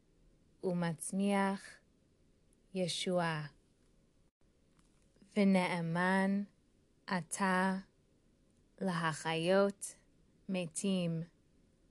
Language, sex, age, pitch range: English, female, 20-39, 170-195 Hz